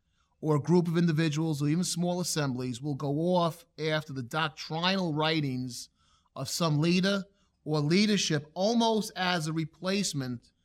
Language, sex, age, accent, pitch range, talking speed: English, male, 30-49, American, 125-180 Hz, 140 wpm